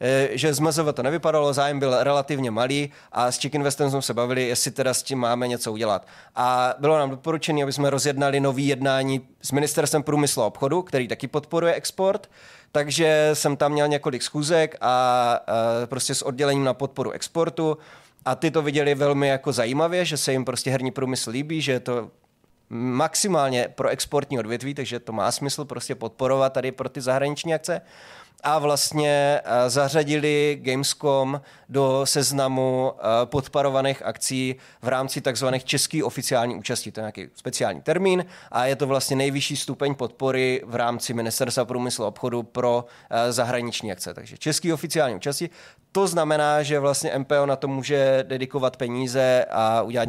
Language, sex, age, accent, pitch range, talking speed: Czech, male, 20-39, native, 125-145 Hz, 160 wpm